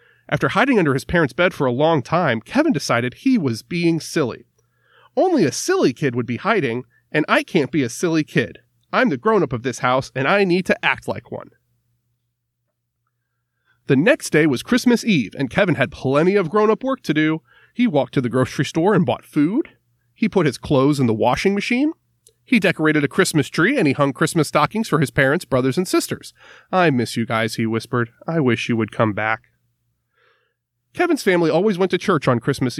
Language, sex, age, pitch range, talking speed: English, male, 30-49, 120-175 Hz, 205 wpm